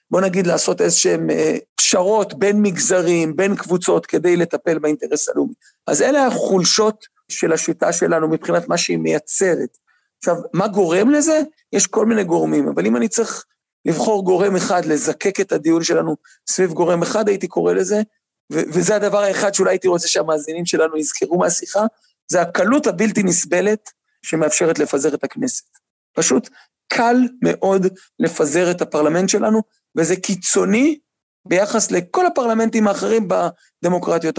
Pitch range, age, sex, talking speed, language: 175-230 Hz, 40-59, male, 140 wpm, Hebrew